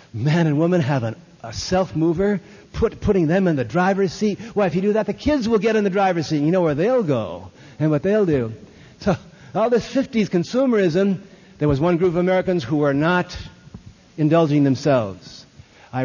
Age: 60-79